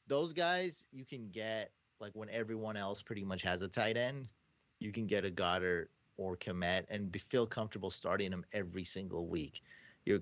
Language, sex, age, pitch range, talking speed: English, male, 30-49, 95-120 Hz, 190 wpm